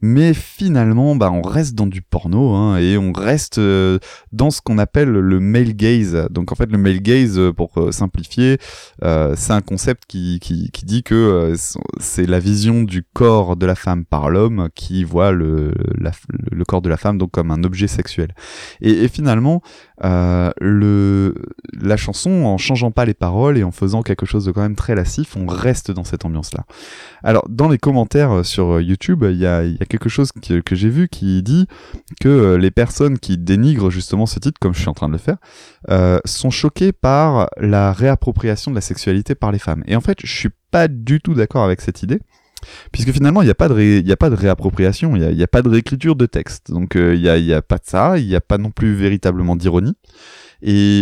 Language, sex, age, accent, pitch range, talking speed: French, male, 20-39, French, 90-125 Hz, 220 wpm